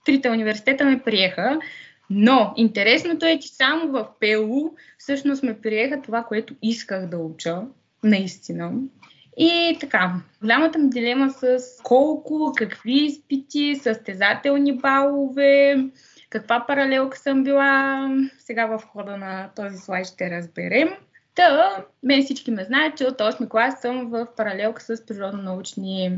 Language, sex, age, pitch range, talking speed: Bulgarian, female, 20-39, 200-275 Hz, 130 wpm